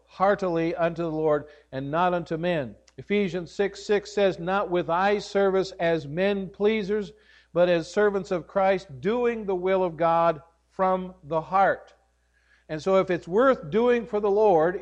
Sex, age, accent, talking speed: male, 50-69, American, 165 wpm